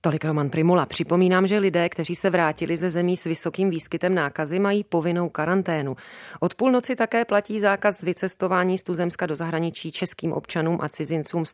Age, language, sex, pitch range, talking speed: 30-49, Czech, female, 155-180 Hz, 170 wpm